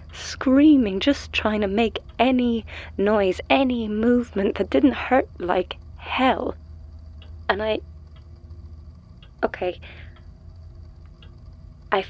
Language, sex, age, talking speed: English, female, 20-39, 90 wpm